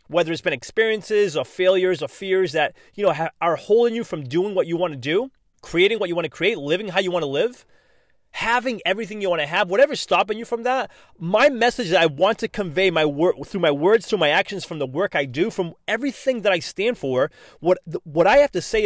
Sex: male